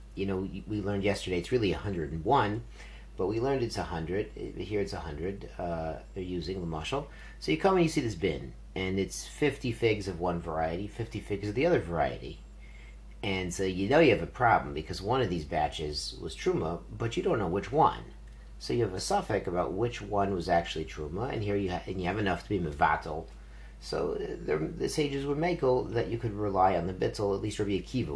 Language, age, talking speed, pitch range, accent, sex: English, 50-69, 220 wpm, 85-115 Hz, American, male